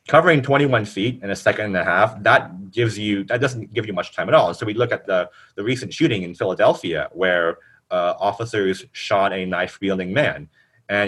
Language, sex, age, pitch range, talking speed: English, male, 30-49, 100-140 Hz, 215 wpm